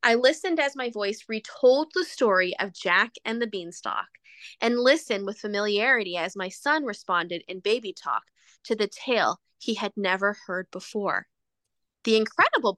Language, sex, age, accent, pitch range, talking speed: English, female, 20-39, American, 195-250 Hz, 160 wpm